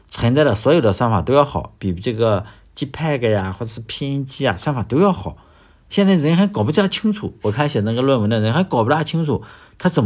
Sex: male